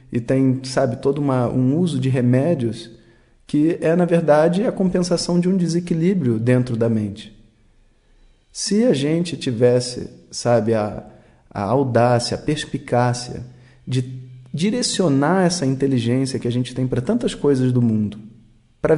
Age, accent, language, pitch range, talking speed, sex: 40-59, Brazilian, Portuguese, 120-155 Hz, 140 wpm, male